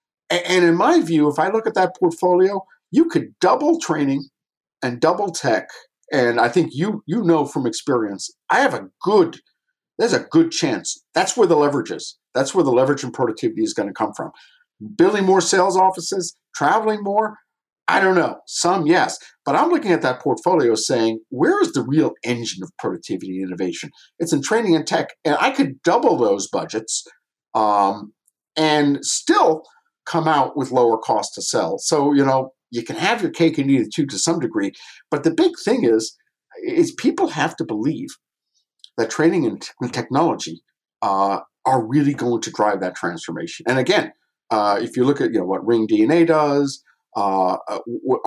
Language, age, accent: English, 50-69, American